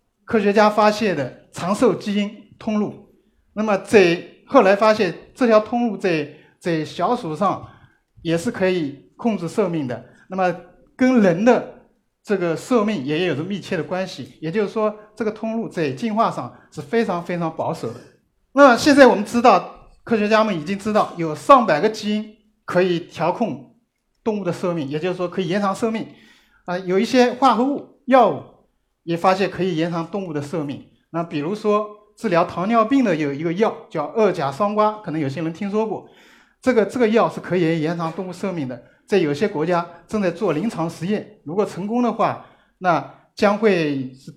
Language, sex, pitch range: Chinese, male, 160-215 Hz